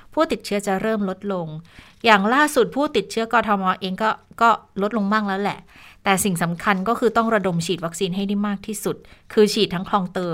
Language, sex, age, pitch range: Thai, female, 20-39, 175-220 Hz